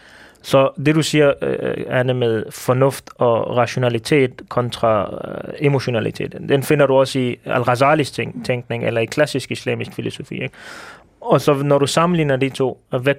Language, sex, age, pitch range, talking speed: Danish, male, 20-39, 125-150 Hz, 145 wpm